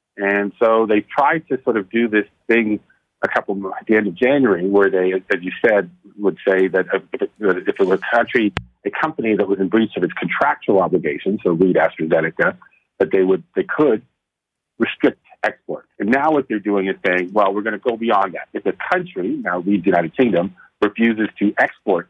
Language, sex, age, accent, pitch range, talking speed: English, male, 50-69, American, 95-120 Hz, 210 wpm